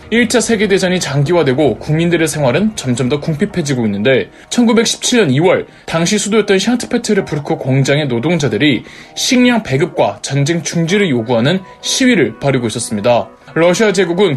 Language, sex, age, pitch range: Korean, male, 20-39, 140-220 Hz